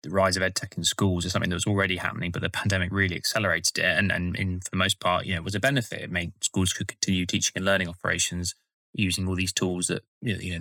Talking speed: 265 wpm